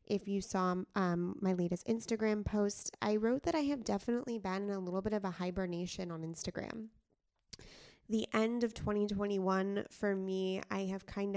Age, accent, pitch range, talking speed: 20-39, American, 185-225 Hz, 175 wpm